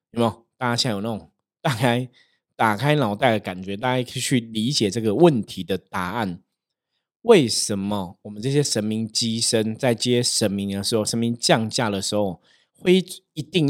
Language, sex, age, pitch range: Chinese, male, 20-39, 100-130 Hz